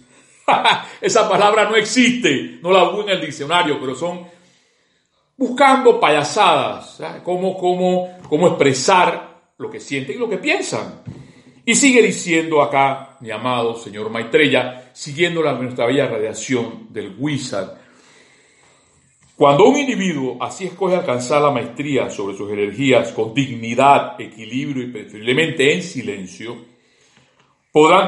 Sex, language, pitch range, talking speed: male, Spanish, 130-190 Hz, 125 wpm